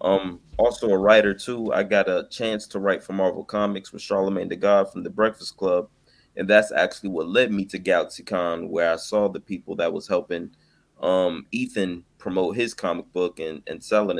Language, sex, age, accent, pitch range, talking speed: English, male, 20-39, American, 90-105 Hz, 200 wpm